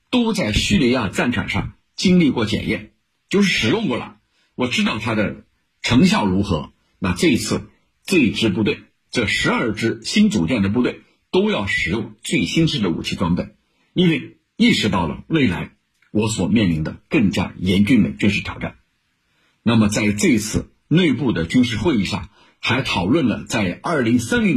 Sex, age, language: male, 50-69, Chinese